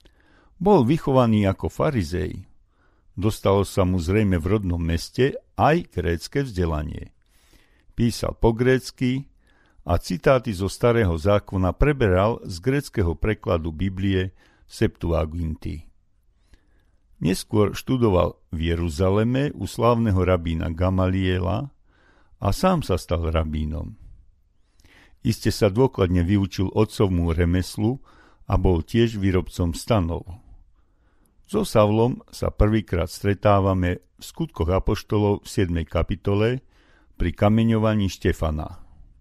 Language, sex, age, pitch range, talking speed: Slovak, male, 50-69, 85-110 Hz, 100 wpm